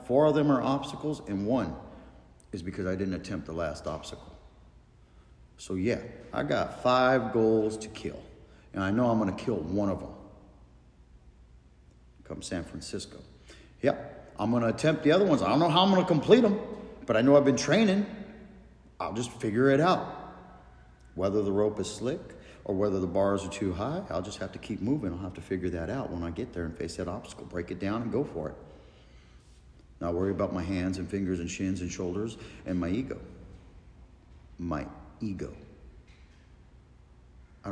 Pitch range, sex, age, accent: 80-110 Hz, male, 50-69, American